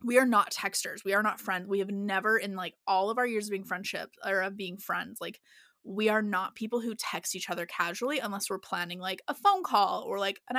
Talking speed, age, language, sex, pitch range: 250 wpm, 20-39, English, female, 195-240 Hz